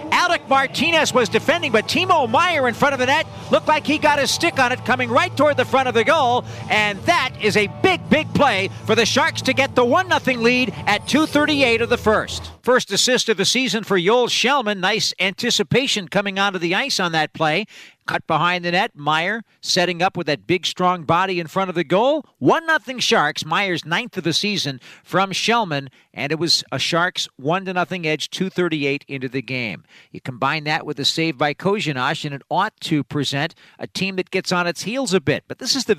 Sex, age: male, 50-69